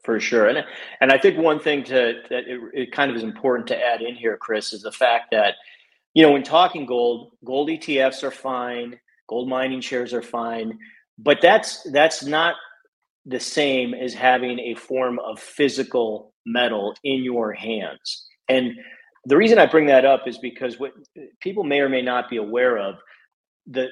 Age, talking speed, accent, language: 40-59, 185 wpm, American, English